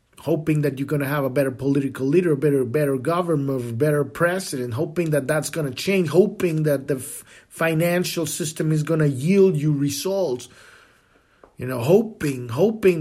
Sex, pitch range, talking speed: male, 135-175 Hz, 170 wpm